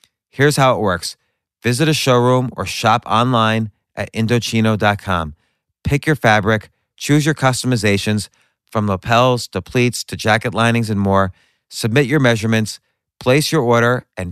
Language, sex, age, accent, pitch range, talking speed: English, male, 30-49, American, 105-135 Hz, 145 wpm